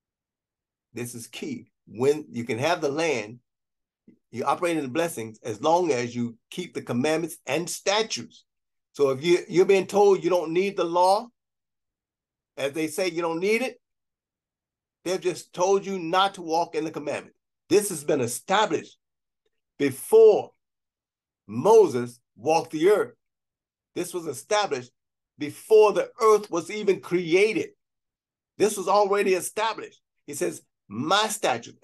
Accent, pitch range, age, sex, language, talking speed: American, 130-195 Hz, 50-69, male, English, 145 wpm